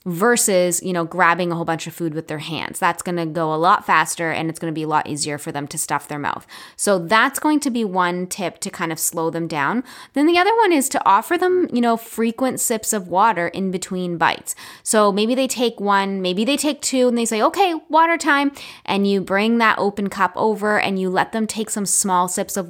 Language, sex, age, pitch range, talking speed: English, female, 10-29, 165-215 Hz, 245 wpm